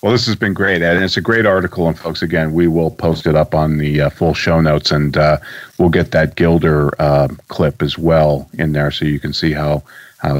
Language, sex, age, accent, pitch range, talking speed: English, male, 40-59, American, 80-95 Hz, 250 wpm